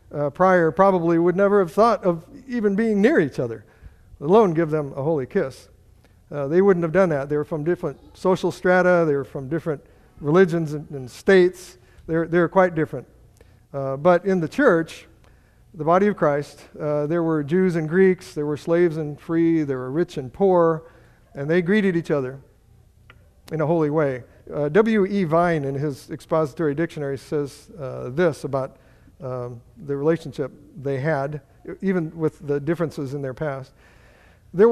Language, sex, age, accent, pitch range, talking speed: English, male, 50-69, American, 135-180 Hz, 180 wpm